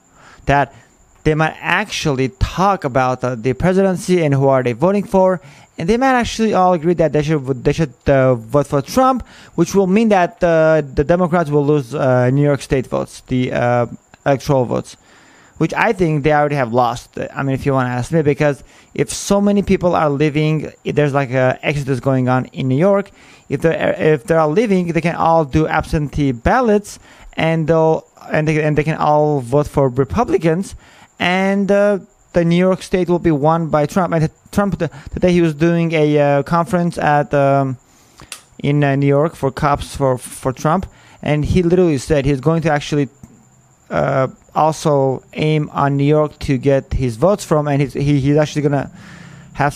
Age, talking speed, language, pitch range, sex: 30-49, 195 wpm, English, 135-170 Hz, male